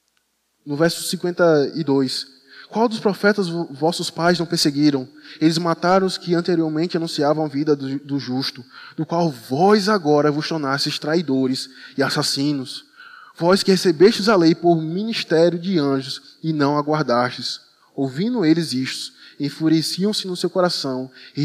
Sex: male